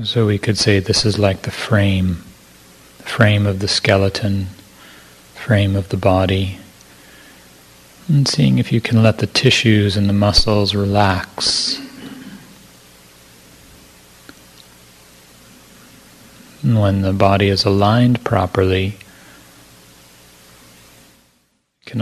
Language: English